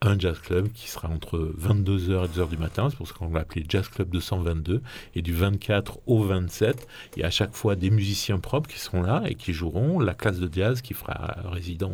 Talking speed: 230 wpm